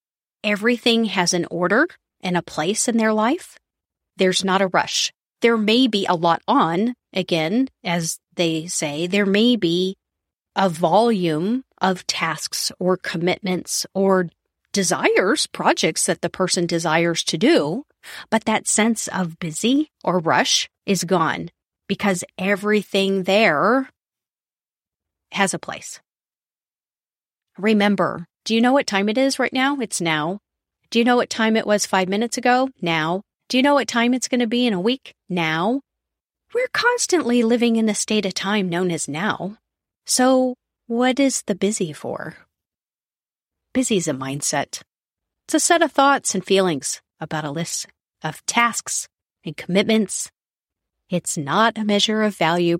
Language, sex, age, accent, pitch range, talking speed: English, female, 30-49, American, 175-235 Hz, 150 wpm